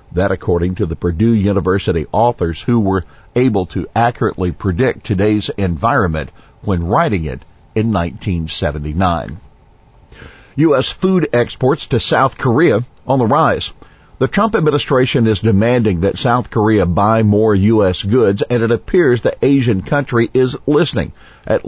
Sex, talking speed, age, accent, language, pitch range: male, 140 wpm, 50-69, American, English, 90-120 Hz